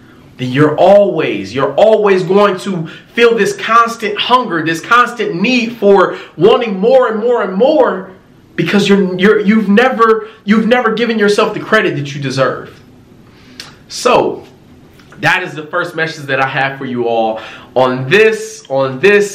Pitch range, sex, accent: 155-235 Hz, male, American